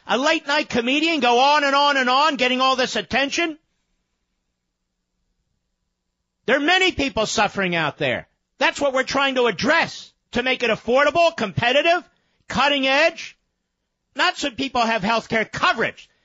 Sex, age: male, 50-69